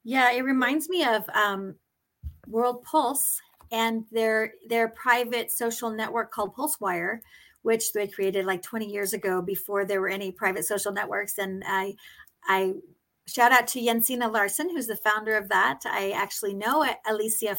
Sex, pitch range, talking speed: female, 215-260 Hz, 160 wpm